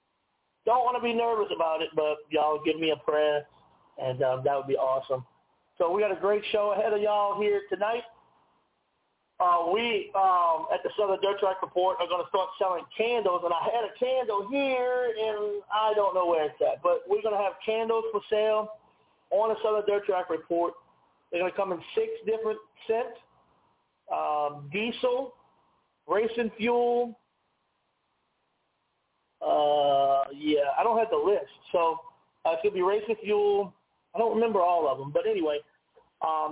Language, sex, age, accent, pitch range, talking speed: English, male, 40-59, American, 155-225 Hz, 175 wpm